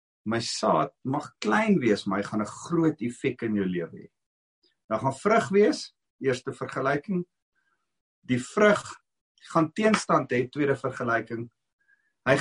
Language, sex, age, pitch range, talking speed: English, male, 50-69, 115-165 Hz, 135 wpm